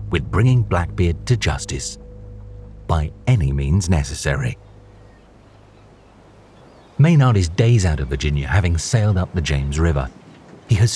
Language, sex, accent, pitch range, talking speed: English, male, British, 75-105 Hz, 125 wpm